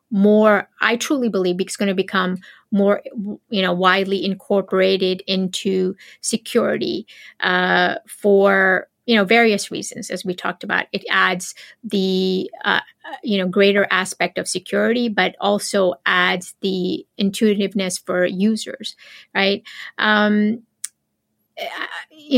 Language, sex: English, female